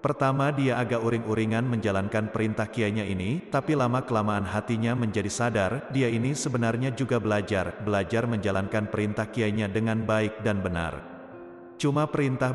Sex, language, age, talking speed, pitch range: male, Indonesian, 30-49, 135 wpm, 105-125 Hz